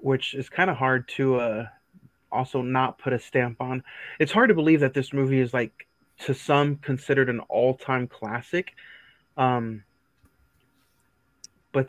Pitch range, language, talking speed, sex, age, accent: 125-140 Hz, English, 150 wpm, male, 30-49, American